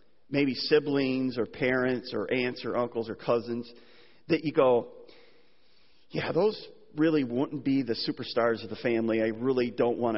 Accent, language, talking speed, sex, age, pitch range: American, English, 160 wpm, male, 40-59, 145-230 Hz